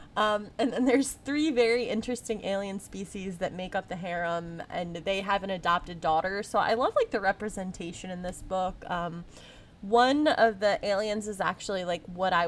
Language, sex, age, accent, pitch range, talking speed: English, female, 20-39, American, 180-225 Hz, 190 wpm